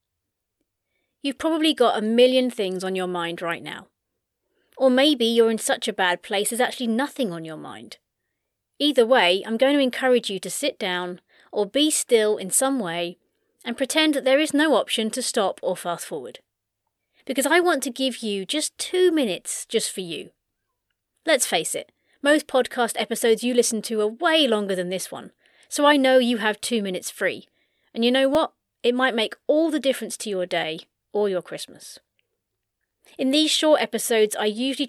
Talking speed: 190 wpm